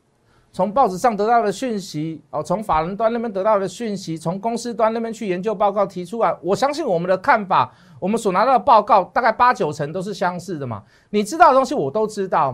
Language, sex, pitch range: Chinese, male, 140-235 Hz